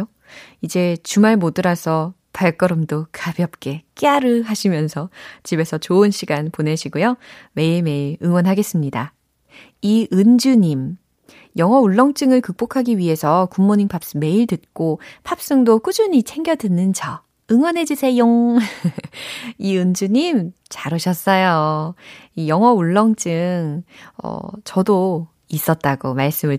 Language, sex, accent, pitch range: Korean, female, native, 160-225 Hz